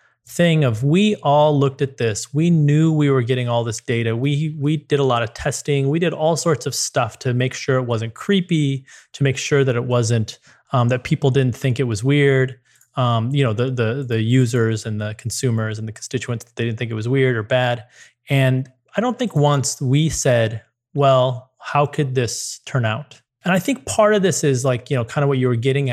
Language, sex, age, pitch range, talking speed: English, male, 30-49, 120-145 Hz, 225 wpm